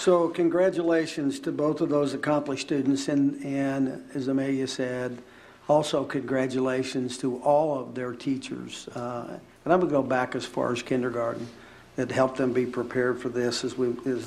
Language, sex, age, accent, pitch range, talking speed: English, male, 50-69, American, 125-145 Hz, 175 wpm